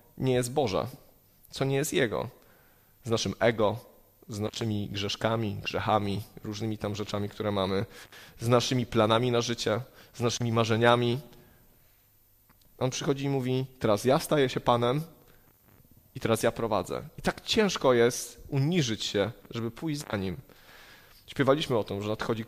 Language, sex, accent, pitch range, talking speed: Polish, male, native, 110-145 Hz, 145 wpm